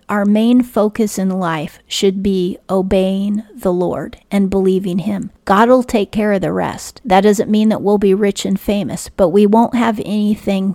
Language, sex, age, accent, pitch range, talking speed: English, female, 40-59, American, 185-210 Hz, 190 wpm